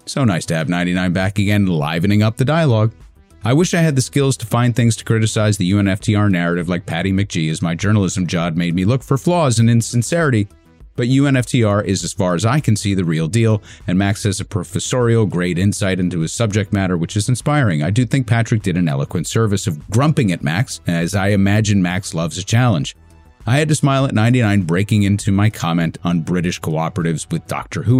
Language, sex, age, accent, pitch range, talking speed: English, male, 30-49, American, 90-125 Hz, 215 wpm